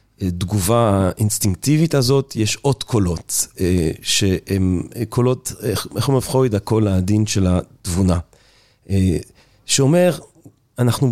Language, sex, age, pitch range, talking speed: Hebrew, male, 40-59, 100-130 Hz, 115 wpm